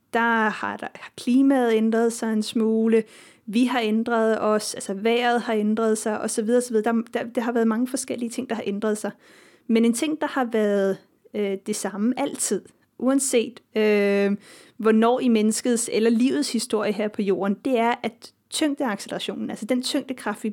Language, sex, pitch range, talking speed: Danish, female, 215-250 Hz, 175 wpm